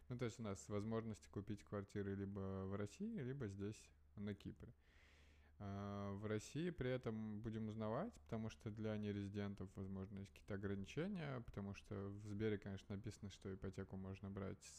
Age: 20-39